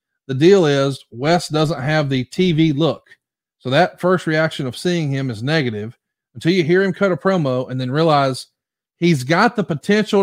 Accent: American